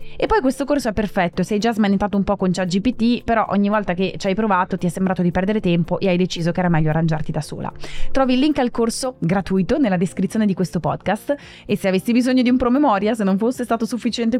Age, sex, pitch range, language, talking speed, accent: 20-39, female, 185-230 Hz, Italian, 240 wpm, native